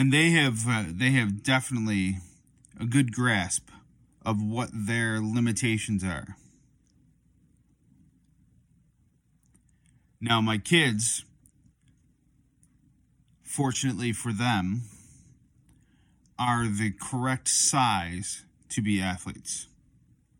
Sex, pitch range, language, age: male, 100-125 Hz, English, 30-49